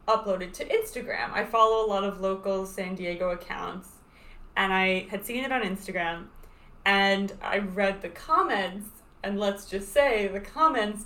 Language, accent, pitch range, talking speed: English, American, 200-245 Hz, 165 wpm